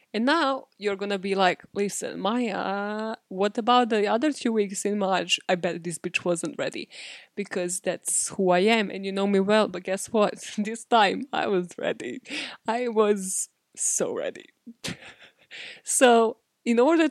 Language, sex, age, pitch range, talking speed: English, female, 20-39, 195-245 Hz, 165 wpm